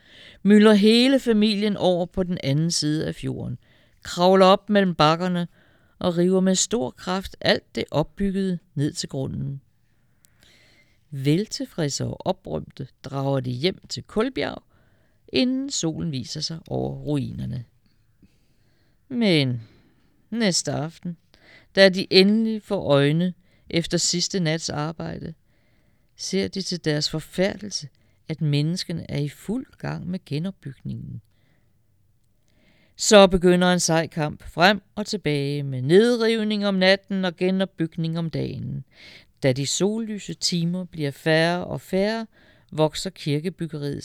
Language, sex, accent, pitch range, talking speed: Danish, female, native, 135-190 Hz, 120 wpm